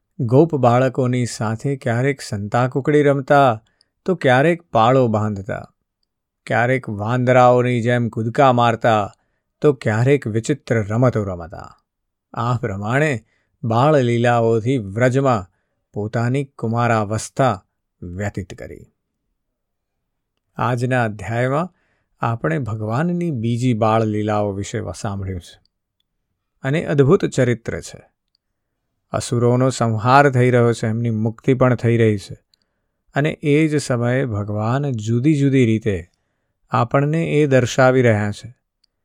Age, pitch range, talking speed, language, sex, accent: 50-69, 105-135 Hz, 95 wpm, Gujarati, male, native